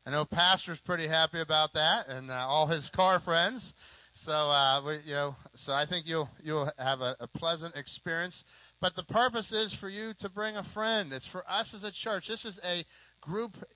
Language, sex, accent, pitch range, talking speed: English, male, American, 145-185 Hz, 210 wpm